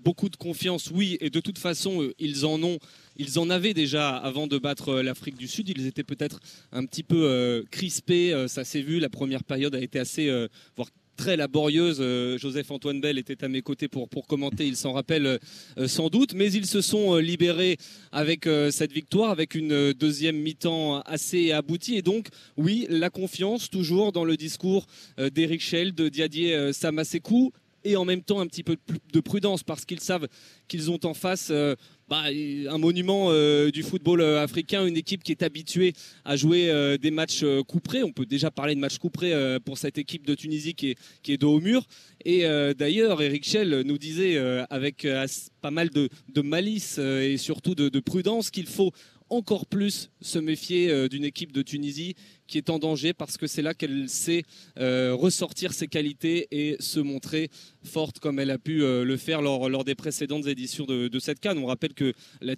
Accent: French